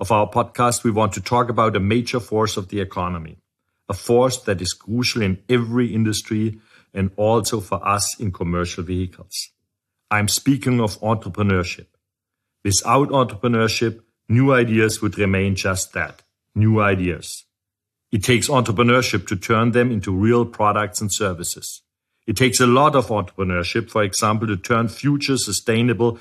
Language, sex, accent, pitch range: German, male, German, 100-115 Hz